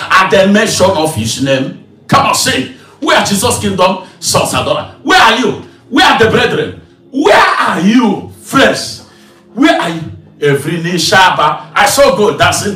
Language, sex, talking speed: English, male, 165 wpm